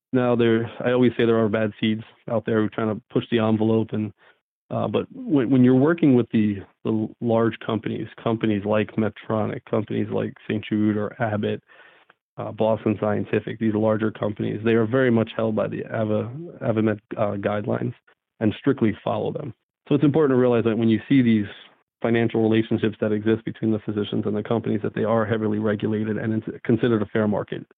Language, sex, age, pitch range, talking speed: English, male, 40-59, 110-115 Hz, 200 wpm